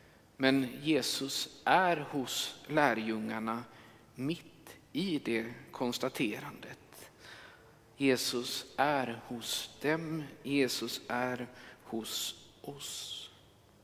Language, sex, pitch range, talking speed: Swedish, male, 120-155 Hz, 75 wpm